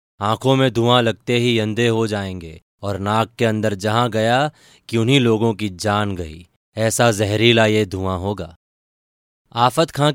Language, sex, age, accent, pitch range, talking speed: Hindi, male, 30-49, native, 100-120 Hz, 160 wpm